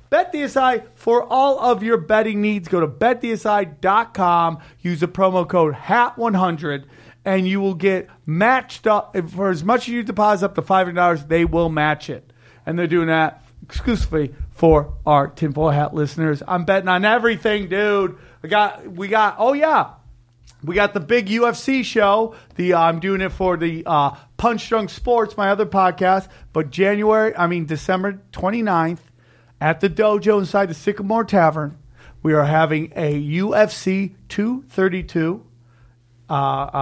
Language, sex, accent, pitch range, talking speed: English, male, American, 160-210 Hz, 165 wpm